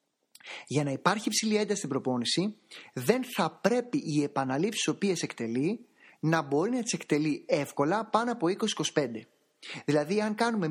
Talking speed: 145 wpm